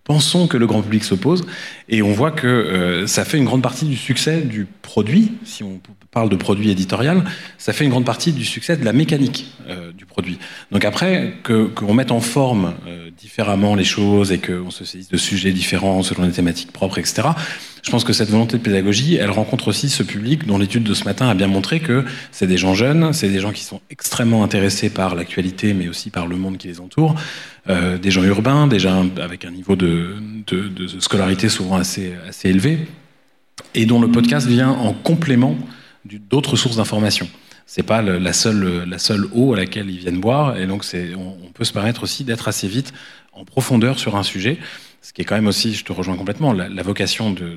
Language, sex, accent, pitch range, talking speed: French, male, French, 95-125 Hz, 220 wpm